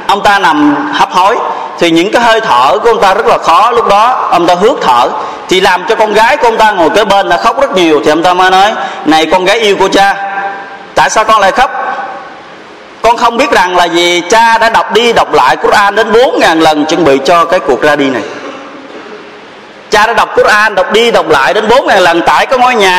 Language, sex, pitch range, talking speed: Vietnamese, male, 170-225 Hz, 245 wpm